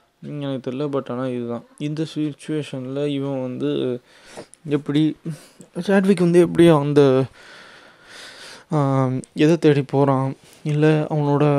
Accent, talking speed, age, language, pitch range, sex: native, 100 wpm, 20-39, Tamil, 130-150 Hz, male